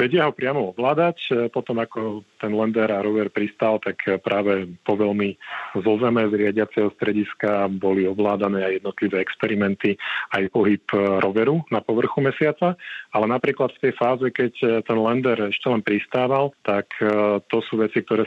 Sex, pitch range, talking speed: male, 100-110 Hz, 150 wpm